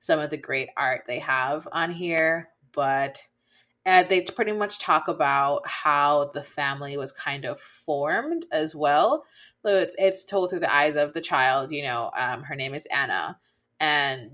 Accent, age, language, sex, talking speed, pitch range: American, 20-39, English, female, 185 wpm, 140-185 Hz